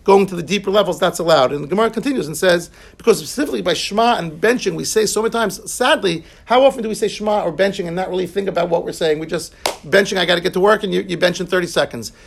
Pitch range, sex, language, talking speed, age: 175-215 Hz, male, English, 280 wpm, 50-69